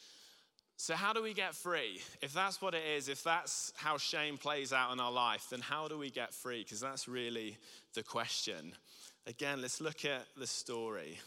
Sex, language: male, English